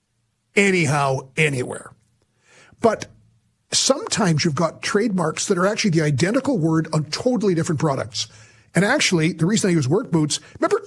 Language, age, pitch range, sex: English, 50-69, 135-190 Hz, male